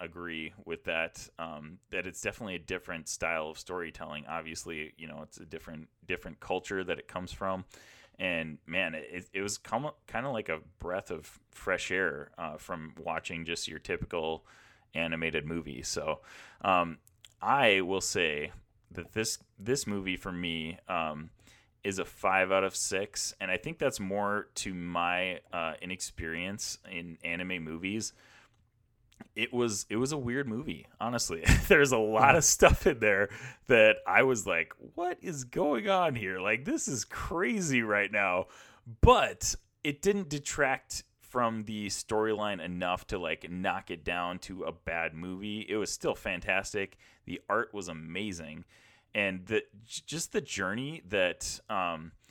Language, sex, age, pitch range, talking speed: English, male, 30-49, 85-110 Hz, 155 wpm